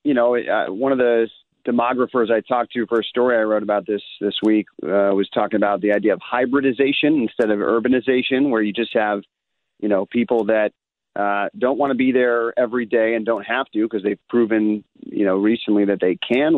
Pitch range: 105-125 Hz